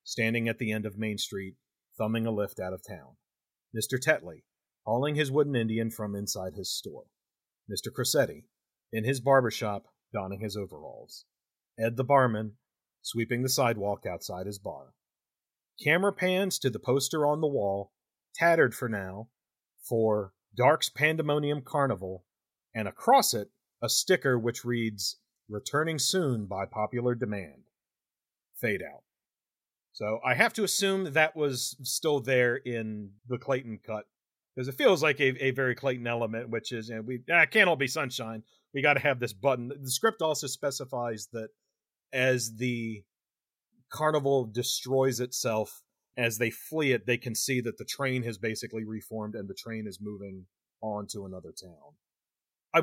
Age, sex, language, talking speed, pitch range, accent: 40-59, male, English, 160 wpm, 110-135 Hz, American